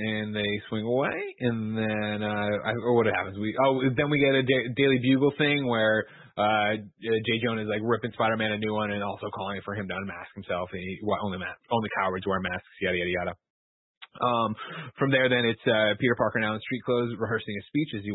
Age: 20-39